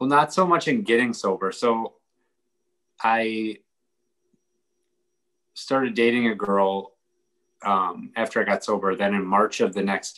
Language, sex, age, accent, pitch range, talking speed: English, male, 20-39, American, 95-150 Hz, 140 wpm